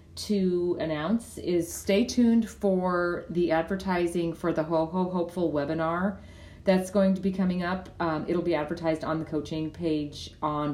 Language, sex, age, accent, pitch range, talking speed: English, female, 40-59, American, 155-180 Hz, 160 wpm